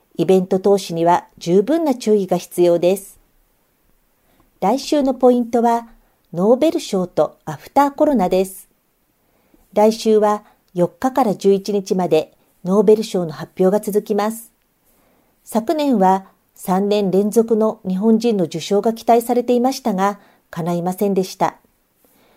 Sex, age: female, 50-69